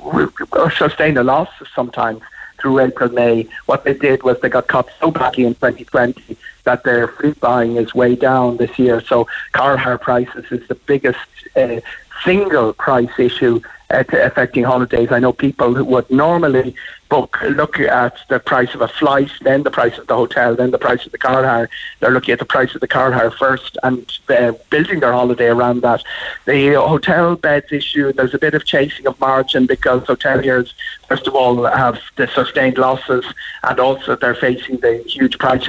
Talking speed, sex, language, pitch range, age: 185 wpm, male, English, 120-140 Hz, 60-79